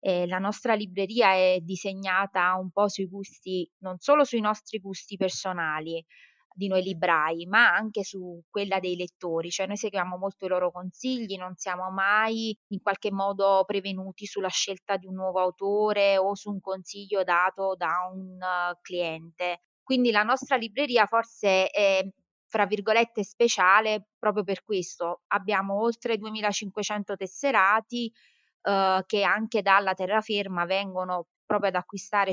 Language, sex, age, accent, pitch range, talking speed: Italian, female, 20-39, native, 185-210 Hz, 145 wpm